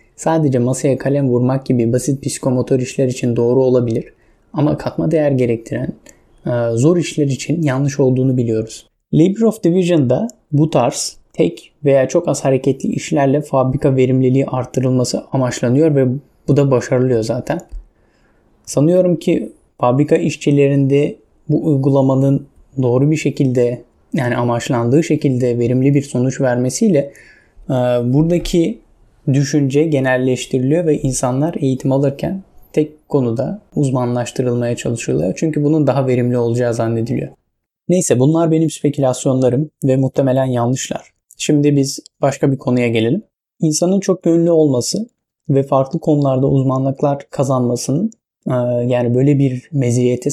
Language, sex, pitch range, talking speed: Turkish, male, 125-150 Hz, 120 wpm